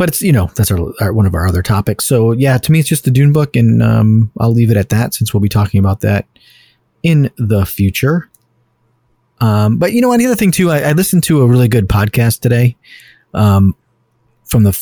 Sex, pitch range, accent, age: male, 105-125 Hz, American, 30-49